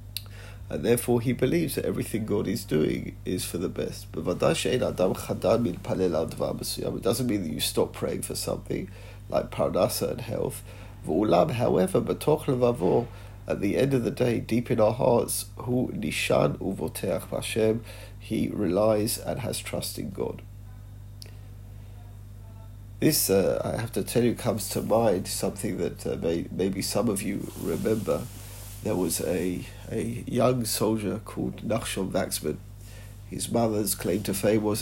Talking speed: 135 wpm